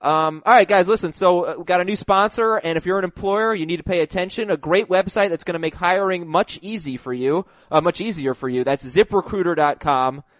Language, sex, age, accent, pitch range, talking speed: English, male, 20-39, American, 145-200 Hz, 220 wpm